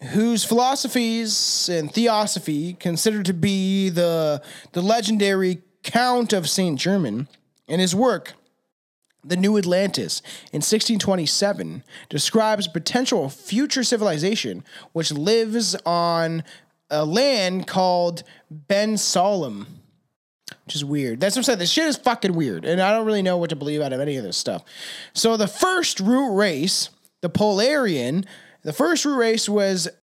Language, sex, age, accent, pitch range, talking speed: English, male, 20-39, American, 165-215 Hz, 140 wpm